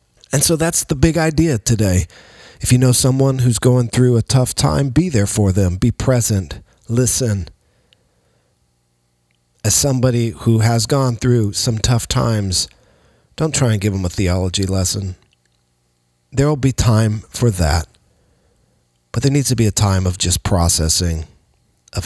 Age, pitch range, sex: 40-59, 90-120 Hz, male